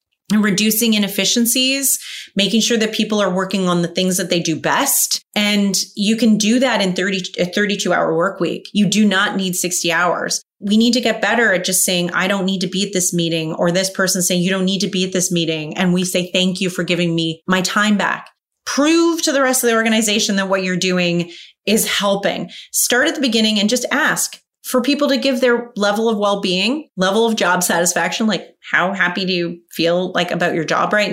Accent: American